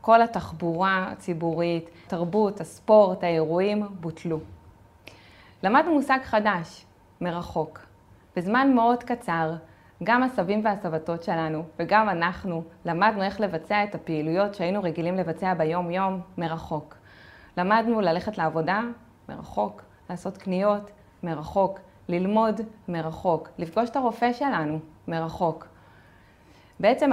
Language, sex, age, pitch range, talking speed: Hebrew, female, 20-39, 165-215 Hz, 100 wpm